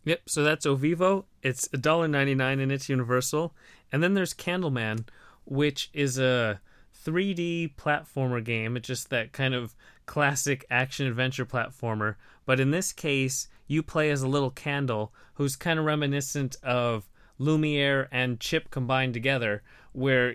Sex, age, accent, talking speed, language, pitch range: male, 30-49, American, 140 wpm, English, 125-145 Hz